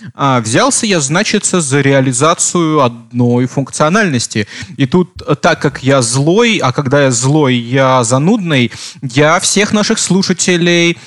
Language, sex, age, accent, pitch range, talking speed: Russian, male, 20-39, native, 130-170 Hz, 125 wpm